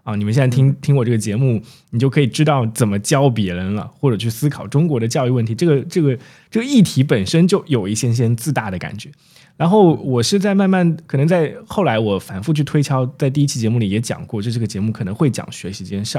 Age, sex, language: 20-39, male, Chinese